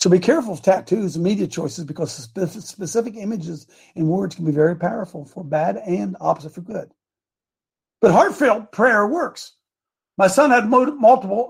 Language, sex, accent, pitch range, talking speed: English, male, American, 165-215 Hz, 160 wpm